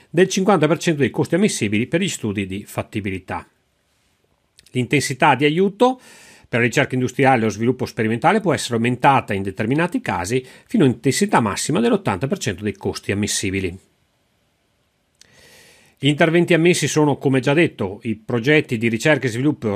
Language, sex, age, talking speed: Italian, male, 40-59, 140 wpm